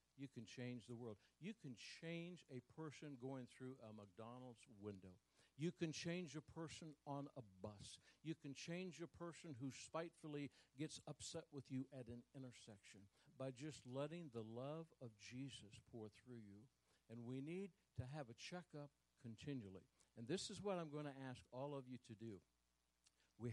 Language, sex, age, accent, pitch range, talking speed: English, male, 60-79, American, 110-150 Hz, 175 wpm